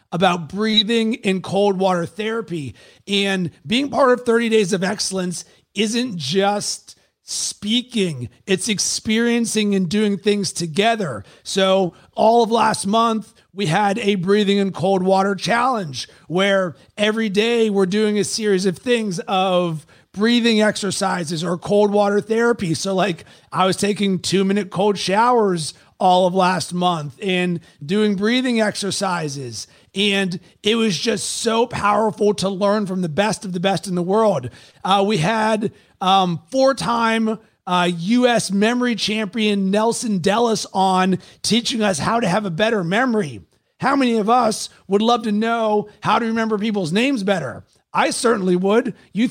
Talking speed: 150 wpm